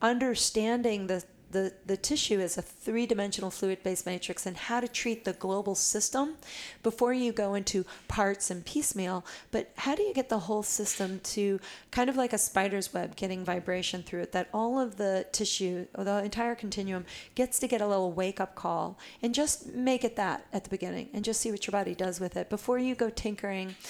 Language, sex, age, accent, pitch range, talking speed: English, female, 40-59, American, 185-220 Hz, 200 wpm